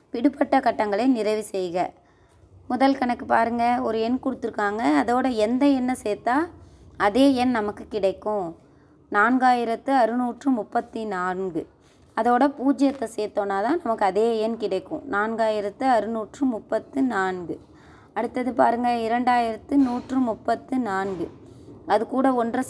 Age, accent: 20-39, native